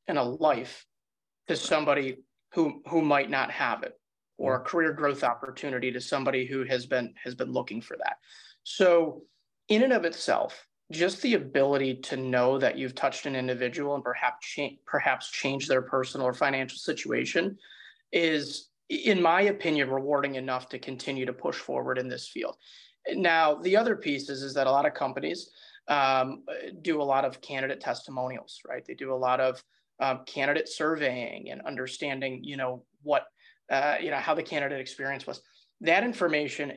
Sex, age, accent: male, 30-49, American